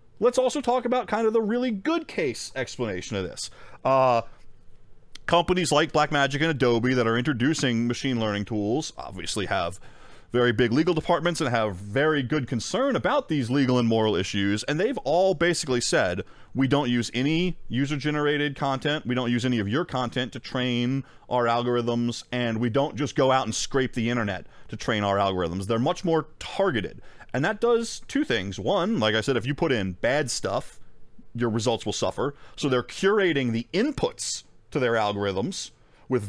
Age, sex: 30-49, male